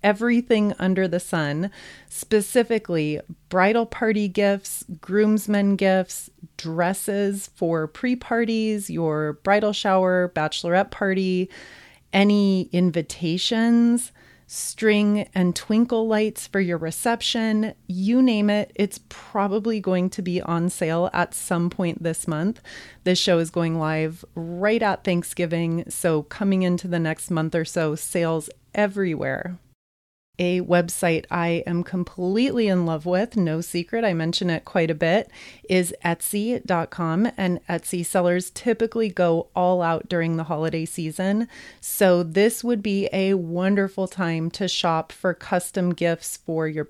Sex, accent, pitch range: female, American, 170-205 Hz